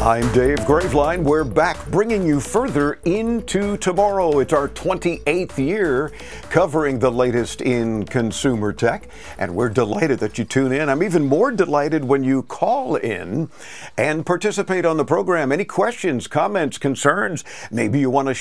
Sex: male